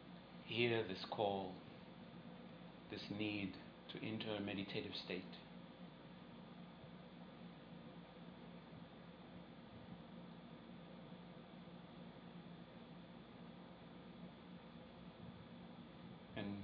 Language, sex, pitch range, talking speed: English, male, 95-105 Hz, 40 wpm